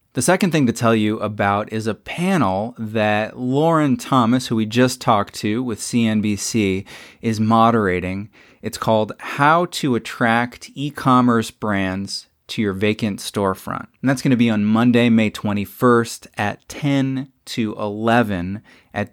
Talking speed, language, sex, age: 145 wpm, English, male, 30-49